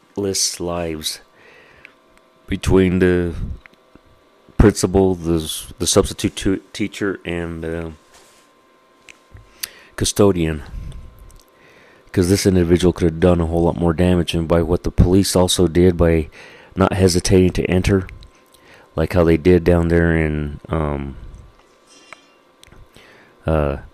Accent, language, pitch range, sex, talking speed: American, English, 80-95 Hz, male, 115 wpm